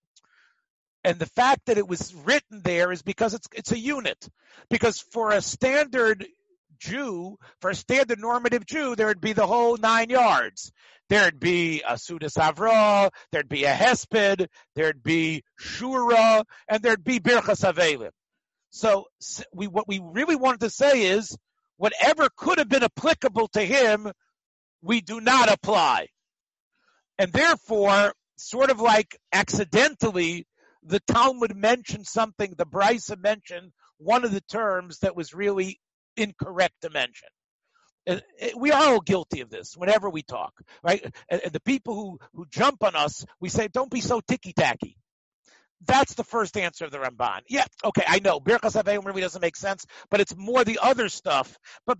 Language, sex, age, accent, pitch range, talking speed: English, male, 50-69, American, 185-240 Hz, 160 wpm